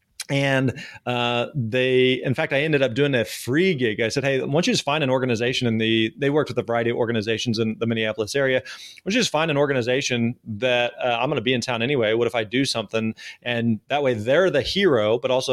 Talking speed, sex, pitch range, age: 245 wpm, male, 115-135 Hz, 30-49